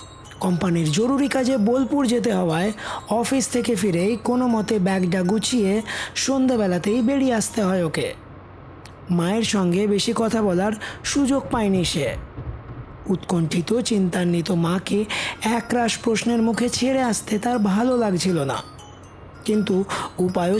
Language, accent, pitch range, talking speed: Bengali, native, 175-235 Hz, 120 wpm